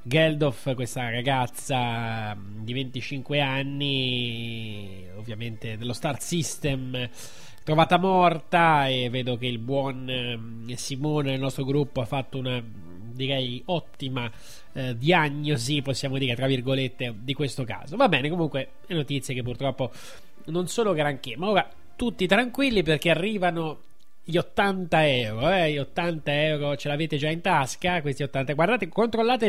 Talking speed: 135 wpm